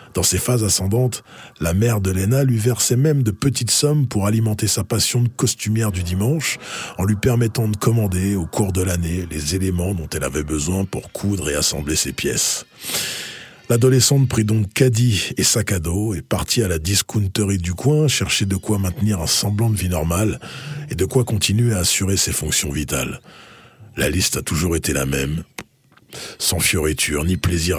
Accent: French